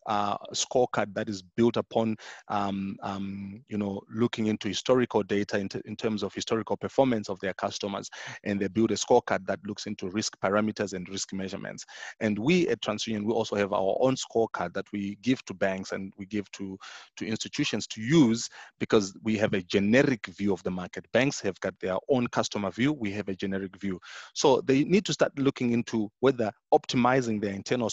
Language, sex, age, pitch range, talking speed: English, male, 30-49, 100-120 Hz, 200 wpm